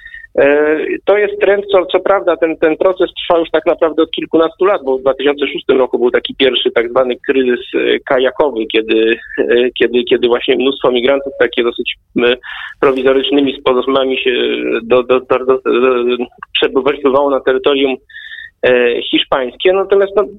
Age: 40-59